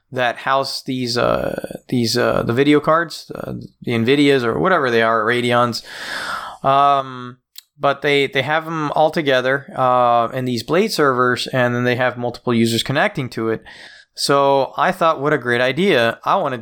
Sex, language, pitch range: male, English, 120-145 Hz